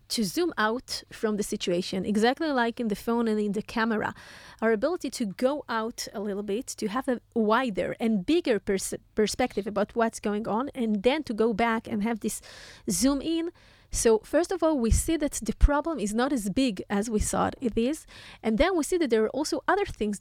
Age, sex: 30-49, female